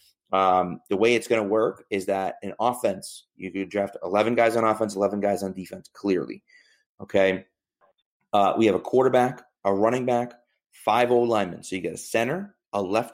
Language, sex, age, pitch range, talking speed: English, male, 30-49, 100-125 Hz, 190 wpm